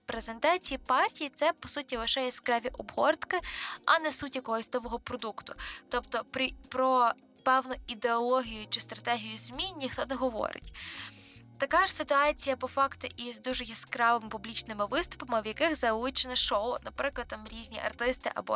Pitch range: 230-280 Hz